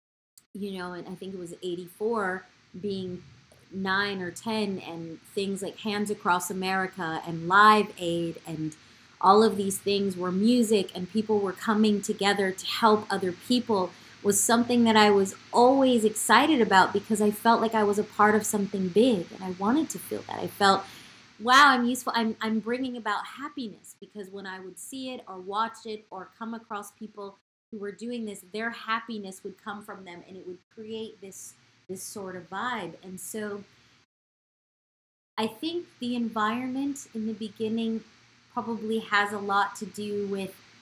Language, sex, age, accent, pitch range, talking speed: English, female, 30-49, American, 190-225 Hz, 175 wpm